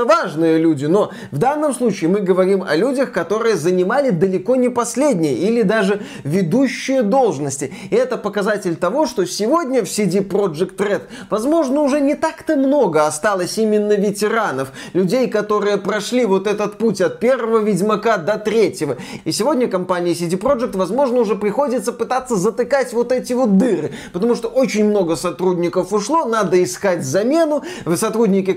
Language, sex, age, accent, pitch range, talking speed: Russian, male, 20-39, native, 185-230 Hz, 150 wpm